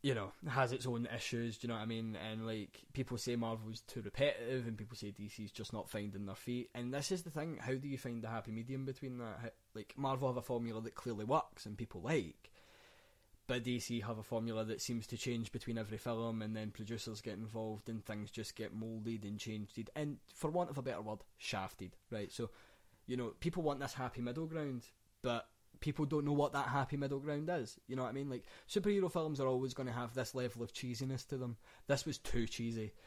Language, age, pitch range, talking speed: English, 20-39, 110-140 Hz, 230 wpm